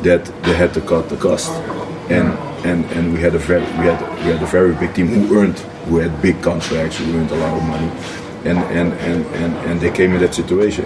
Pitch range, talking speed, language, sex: 80-90 Hz, 245 wpm, English, male